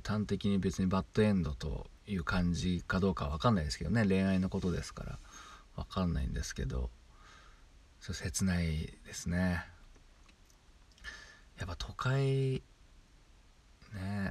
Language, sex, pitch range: Japanese, male, 85-105 Hz